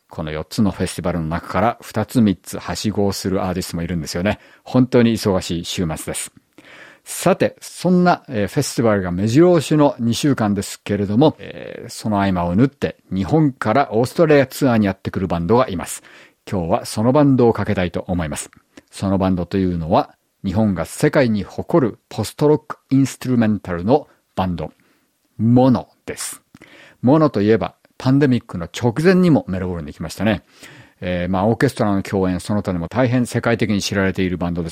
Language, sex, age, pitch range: Japanese, male, 50-69, 90-125 Hz